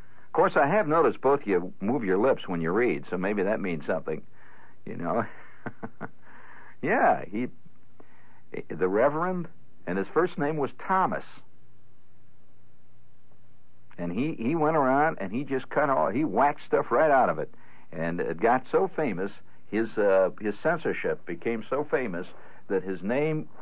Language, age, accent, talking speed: English, 60-79, American, 160 wpm